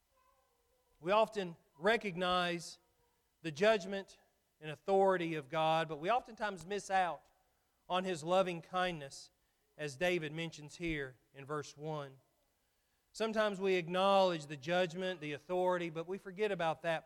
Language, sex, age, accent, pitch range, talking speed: English, male, 40-59, American, 165-205 Hz, 130 wpm